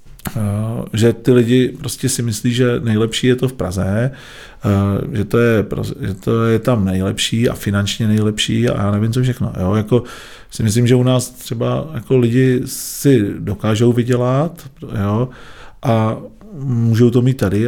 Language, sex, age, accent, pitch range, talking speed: Czech, male, 40-59, native, 105-125 Hz, 165 wpm